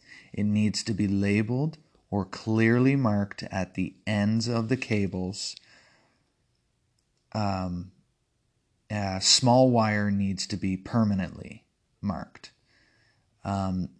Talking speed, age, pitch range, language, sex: 105 wpm, 30-49, 95-115 Hz, English, male